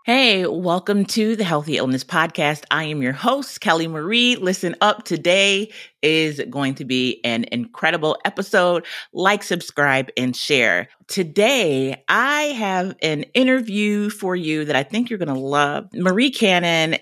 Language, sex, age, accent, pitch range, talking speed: English, female, 30-49, American, 145-185 Hz, 150 wpm